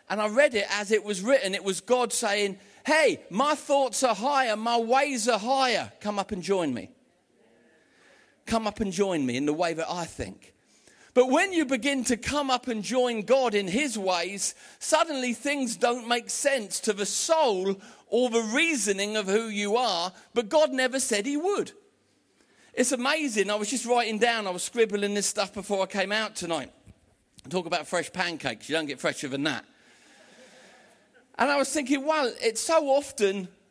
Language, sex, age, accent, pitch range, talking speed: English, male, 40-59, British, 200-260 Hz, 190 wpm